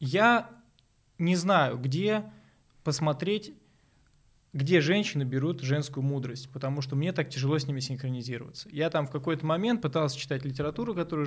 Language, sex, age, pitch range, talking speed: Russian, male, 20-39, 130-160 Hz, 145 wpm